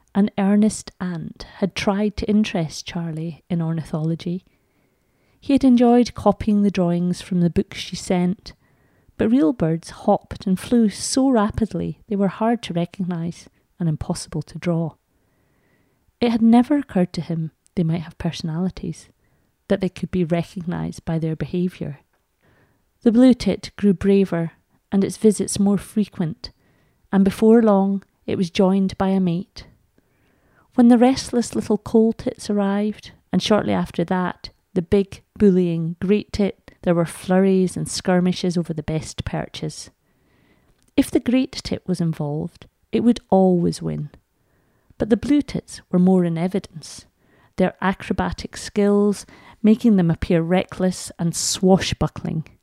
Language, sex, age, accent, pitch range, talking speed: English, female, 30-49, British, 170-205 Hz, 145 wpm